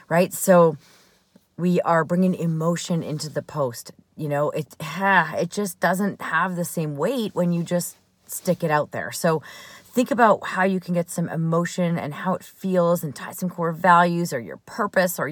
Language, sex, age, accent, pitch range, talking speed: English, female, 30-49, American, 155-185 Hz, 190 wpm